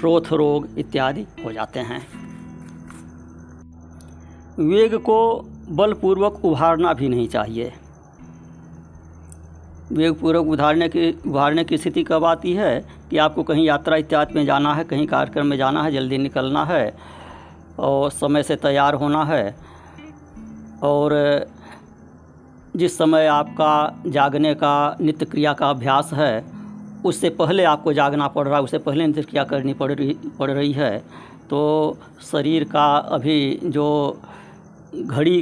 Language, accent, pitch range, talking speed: Hindi, native, 125-155 Hz, 130 wpm